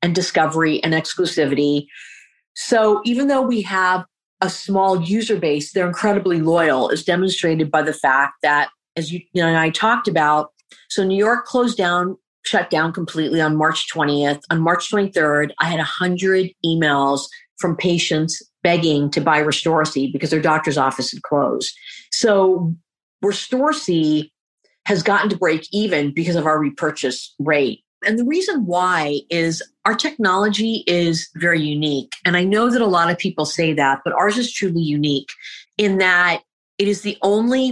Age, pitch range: 40-59, 160-215 Hz